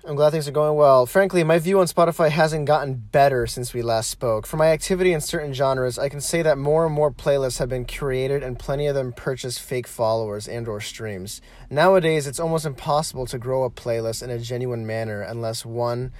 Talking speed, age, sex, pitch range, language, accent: 220 wpm, 20-39, male, 115-150 Hz, English, American